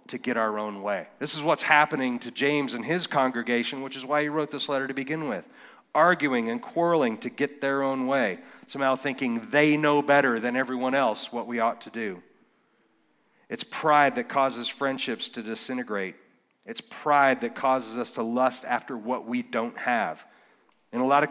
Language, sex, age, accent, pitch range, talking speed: English, male, 40-59, American, 125-150 Hz, 190 wpm